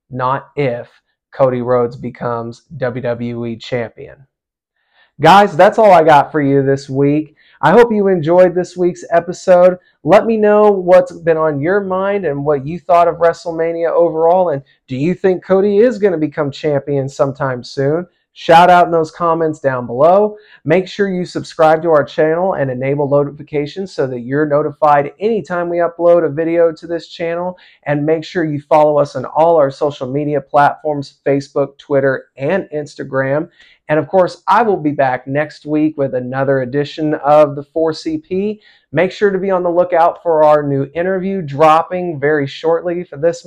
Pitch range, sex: 145-180 Hz, male